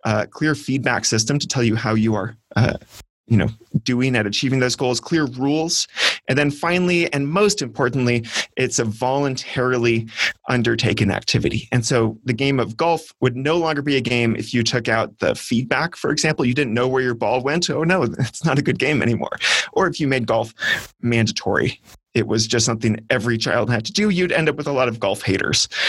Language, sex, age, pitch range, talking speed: English, male, 30-49, 115-145 Hz, 210 wpm